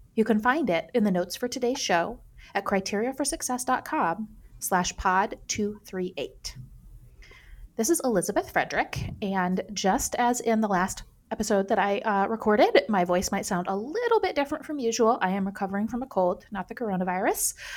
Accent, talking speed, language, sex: American, 160 wpm, English, female